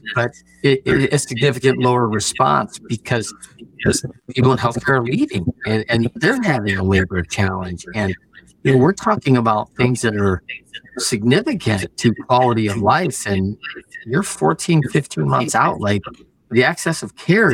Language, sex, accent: English, male, American